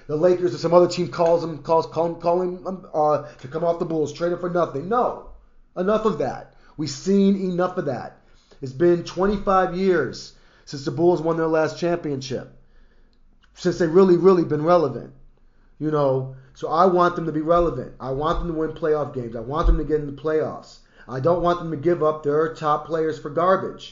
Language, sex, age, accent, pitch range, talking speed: English, male, 30-49, American, 135-170 Hz, 215 wpm